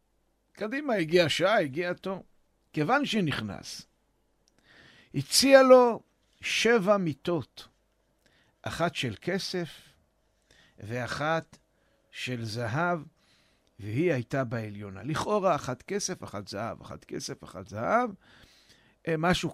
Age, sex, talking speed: 60-79, male, 90 wpm